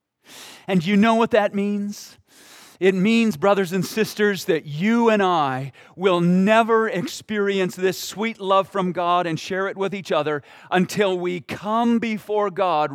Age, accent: 40-59, American